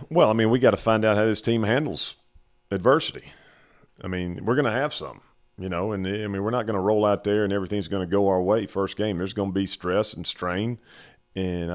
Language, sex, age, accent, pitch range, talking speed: English, male, 40-59, American, 80-100 Hz, 250 wpm